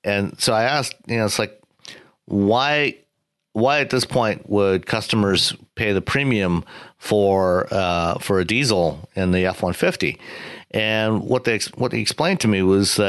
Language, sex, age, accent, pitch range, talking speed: English, male, 50-69, American, 95-115 Hz, 165 wpm